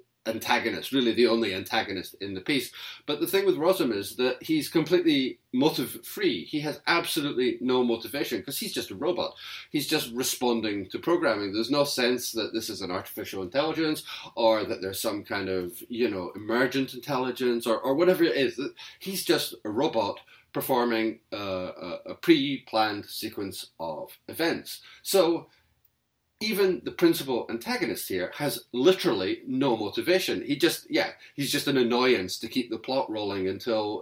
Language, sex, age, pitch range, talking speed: English, male, 30-49, 115-185 Hz, 160 wpm